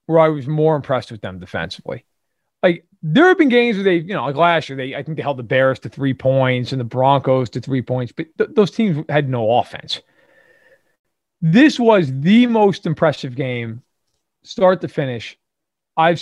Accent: American